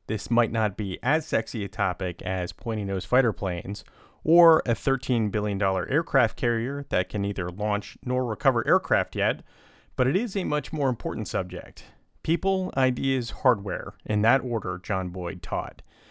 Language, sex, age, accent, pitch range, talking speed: English, male, 30-49, American, 100-125 Hz, 160 wpm